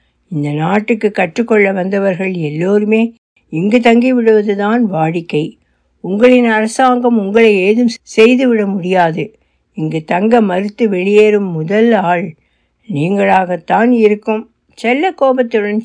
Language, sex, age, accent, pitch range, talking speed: Tamil, female, 60-79, native, 185-235 Hz, 90 wpm